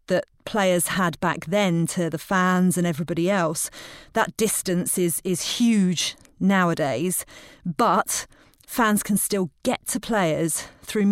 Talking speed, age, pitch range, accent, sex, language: 135 wpm, 40-59, 175-210 Hz, British, female, English